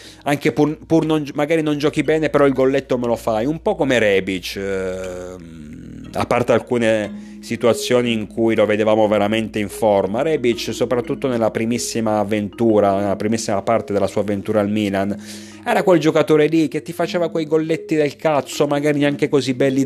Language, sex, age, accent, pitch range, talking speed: Italian, male, 30-49, native, 100-130 Hz, 175 wpm